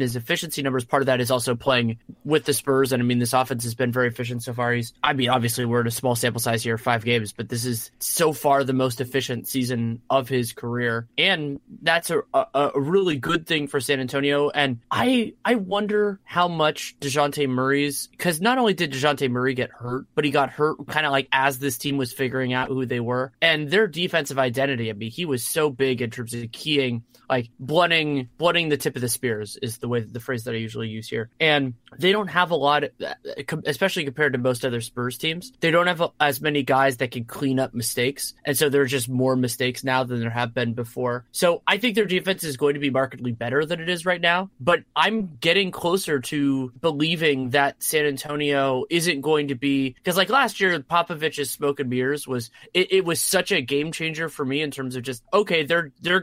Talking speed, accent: 225 wpm, American